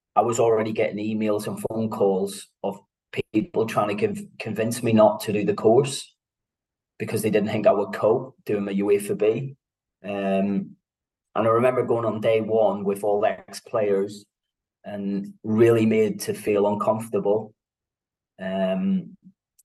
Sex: male